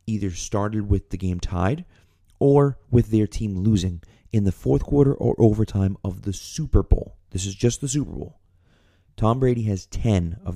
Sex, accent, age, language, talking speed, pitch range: male, American, 30-49, English, 180 wpm, 90-110 Hz